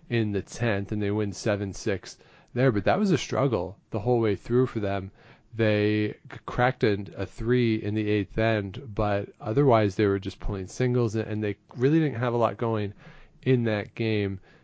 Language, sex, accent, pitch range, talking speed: English, male, American, 100-120 Hz, 190 wpm